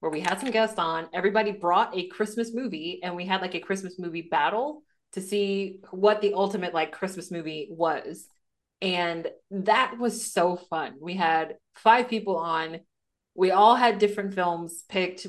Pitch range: 160-205 Hz